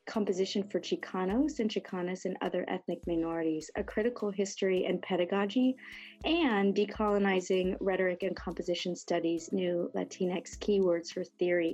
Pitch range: 180-215 Hz